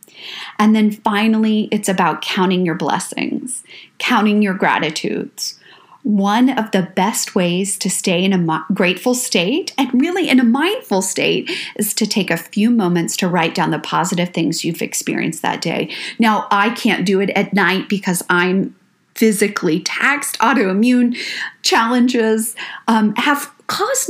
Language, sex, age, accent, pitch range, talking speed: English, female, 40-59, American, 190-245 Hz, 150 wpm